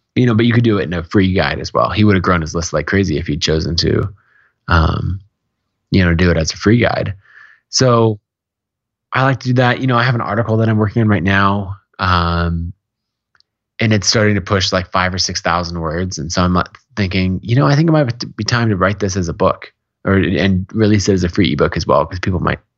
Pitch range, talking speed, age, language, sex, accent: 90-115 Hz, 250 wpm, 20-39, English, male, American